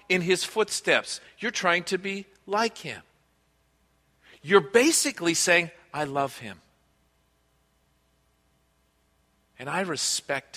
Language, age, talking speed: English, 50-69, 100 wpm